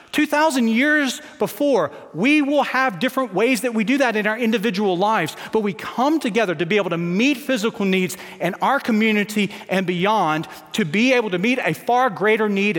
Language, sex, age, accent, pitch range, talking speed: English, male, 40-59, American, 165-245 Hz, 190 wpm